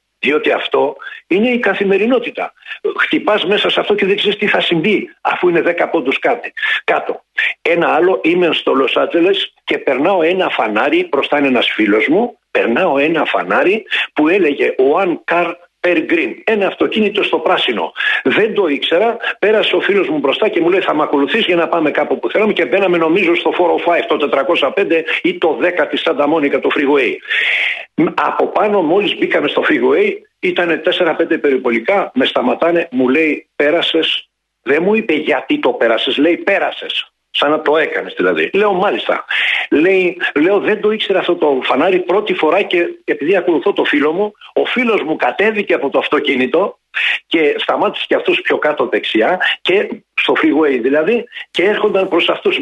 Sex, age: male, 60-79